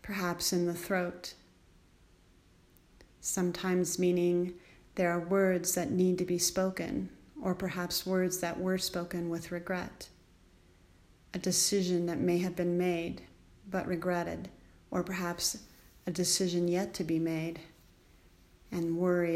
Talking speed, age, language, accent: 125 wpm, 40-59, English, American